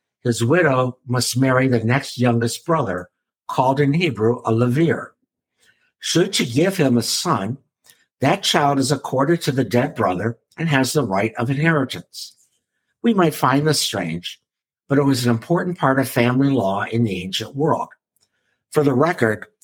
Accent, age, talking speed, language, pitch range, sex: American, 60-79, 165 wpm, English, 115-145 Hz, male